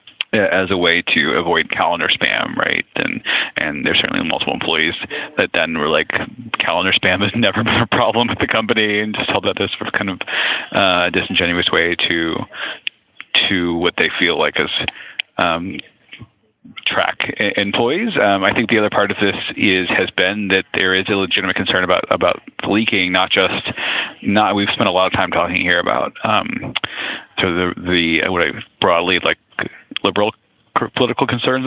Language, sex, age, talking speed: English, male, 30-49, 180 wpm